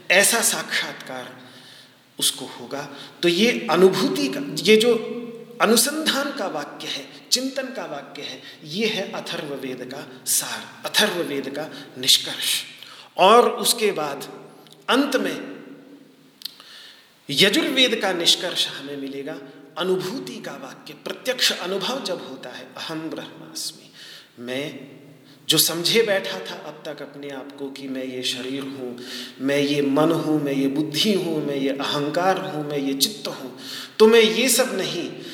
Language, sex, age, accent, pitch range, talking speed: Hindi, male, 40-59, native, 140-200 Hz, 140 wpm